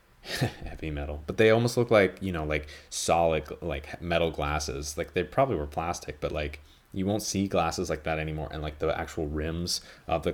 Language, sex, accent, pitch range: English, male, American, 80-105 Hz